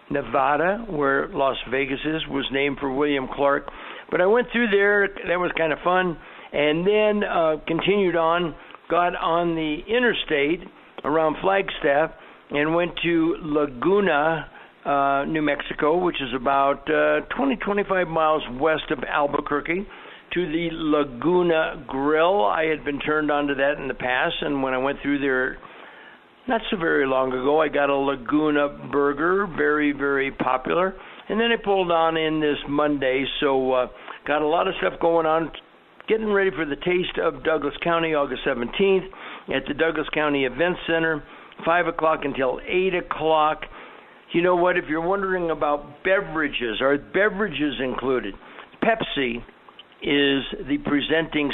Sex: male